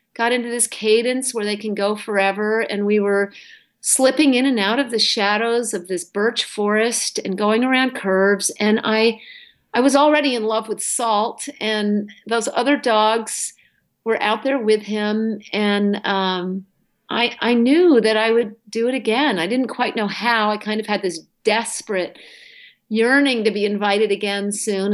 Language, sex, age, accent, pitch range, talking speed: English, female, 50-69, American, 200-250 Hz, 175 wpm